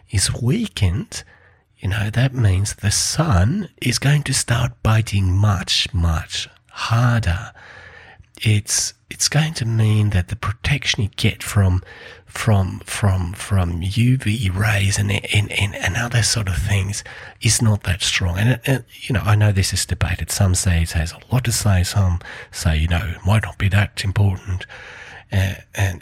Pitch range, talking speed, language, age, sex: 90-115 Hz, 170 wpm, English, 30-49, male